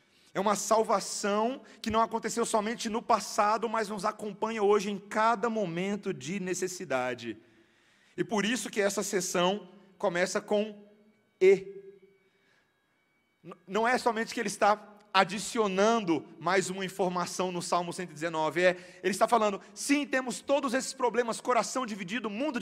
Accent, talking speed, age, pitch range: Brazilian, 140 wpm, 40-59, 180-230 Hz